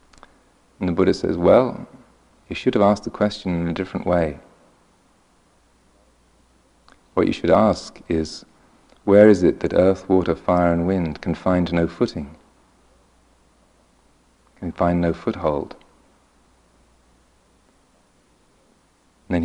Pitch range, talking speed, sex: 85-95 Hz, 115 wpm, male